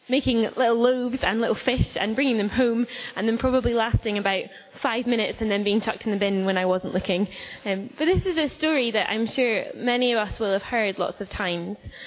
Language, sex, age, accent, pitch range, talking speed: English, female, 10-29, British, 200-245 Hz, 230 wpm